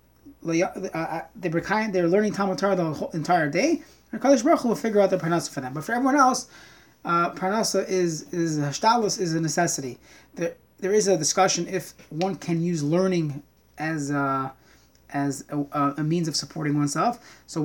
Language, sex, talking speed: English, male, 160 wpm